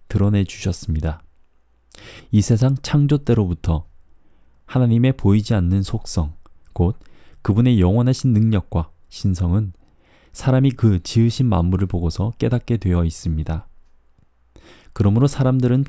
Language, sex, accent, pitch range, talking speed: English, male, Korean, 85-120 Hz, 95 wpm